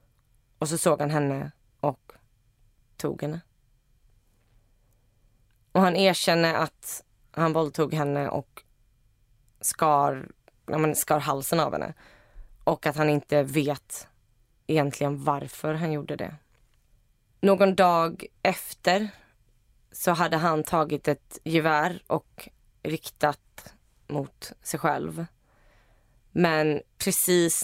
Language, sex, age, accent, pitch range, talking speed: Swedish, female, 20-39, native, 120-160 Hz, 100 wpm